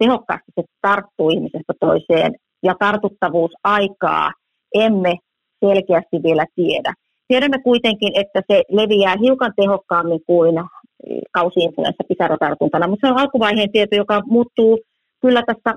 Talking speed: 120 wpm